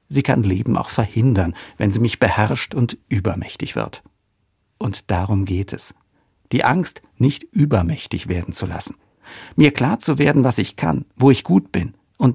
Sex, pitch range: male, 95-120 Hz